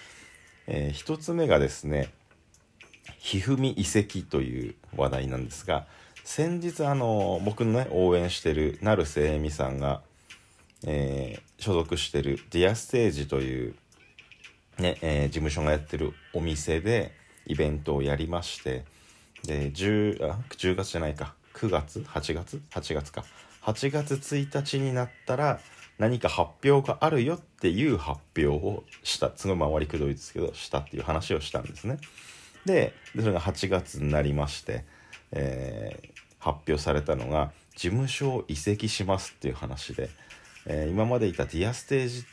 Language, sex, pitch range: Japanese, male, 75-110 Hz